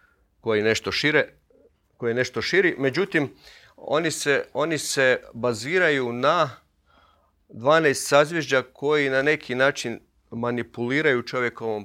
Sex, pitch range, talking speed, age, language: male, 100-135 Hz, 105 wpm, 40-59, Croatian